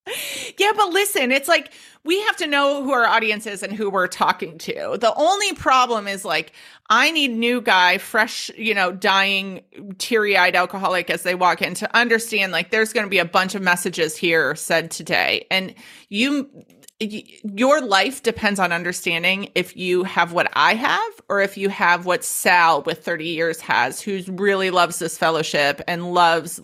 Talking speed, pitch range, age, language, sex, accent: 180 wpm, 185-240 Hz, 30-49, English, female, American